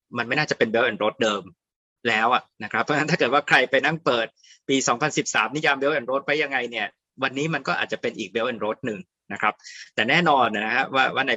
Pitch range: 115-145 Hz